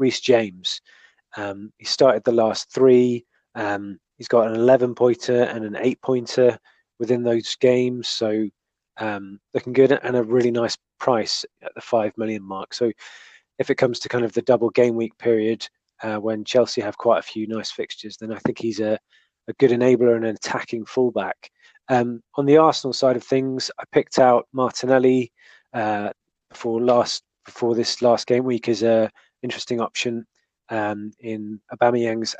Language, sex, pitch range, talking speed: English, male, 110-125 Hz, 175 wpm